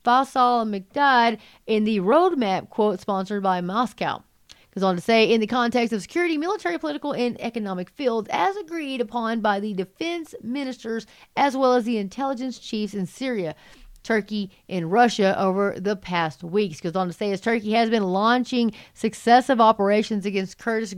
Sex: female